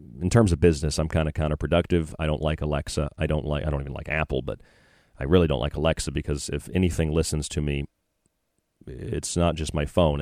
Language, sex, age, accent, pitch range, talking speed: English, male, 40-59, American, 80-95 Hz, 215 wpm